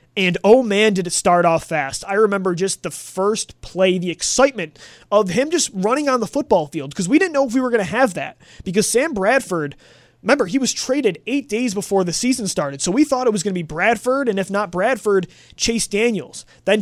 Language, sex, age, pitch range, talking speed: English, male, 20-39, 180-230 Hz, 230 wpm